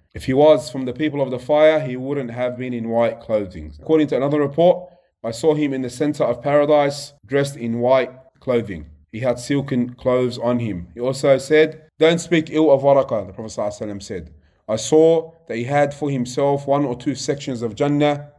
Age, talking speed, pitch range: 30-49, 200 wpm, 110-135 Hz